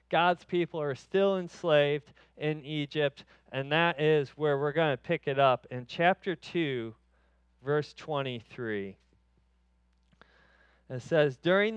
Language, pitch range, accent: English, 120-165 Hz, American